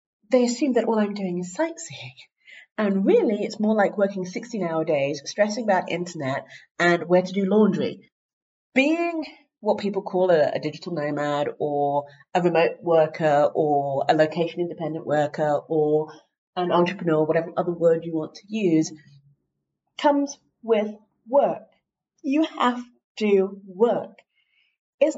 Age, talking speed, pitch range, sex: 40-59, 145 wpm, 165-245 Hz, female